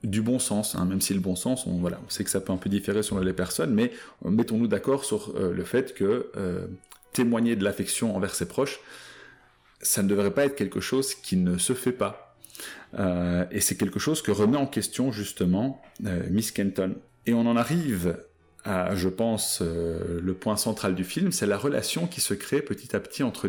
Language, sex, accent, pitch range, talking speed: French, male, French, 100-140 Hz, 220 wpm